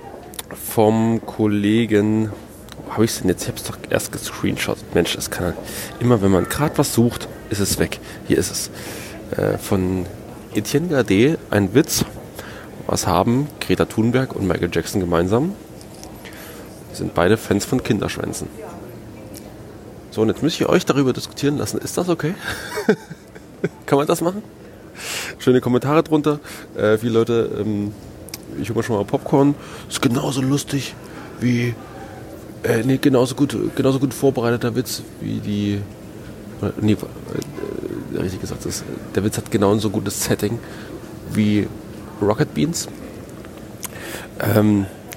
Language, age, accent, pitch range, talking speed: German, 30-49, German, 105-130 Hz, 145 wpm